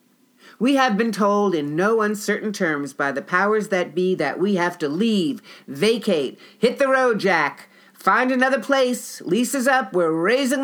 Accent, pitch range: American, 165-240 Hz